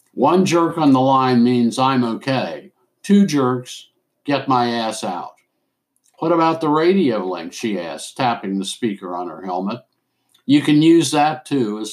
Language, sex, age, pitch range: English, male, 60-79, 110-150 Hz